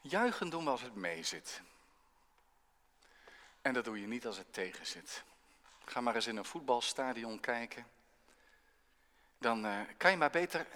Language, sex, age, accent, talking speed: Dutch, male, 50-69, Dutch, 150 wpm